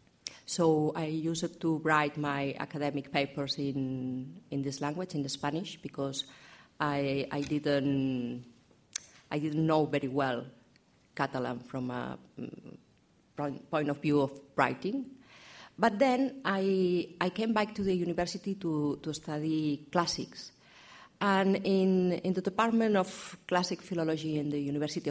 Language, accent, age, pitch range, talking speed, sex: English, Spanish, 50-69, 135-170 Hz, 135 wpm, female